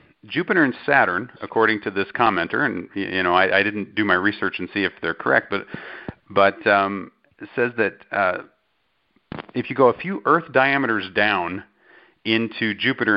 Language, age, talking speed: English, 40-59, 175 wpm